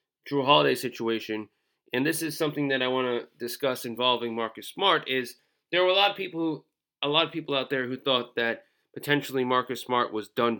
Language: English